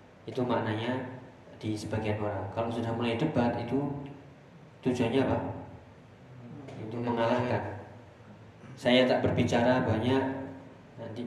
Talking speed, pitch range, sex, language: 100 wpm, 105-125 Hz, male, Indonesian